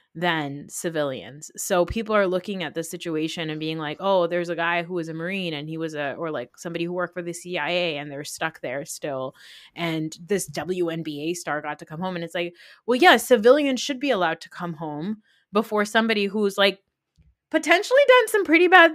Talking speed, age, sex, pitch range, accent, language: 210 wpm, 20-39, female, 175-225 Hz, American, English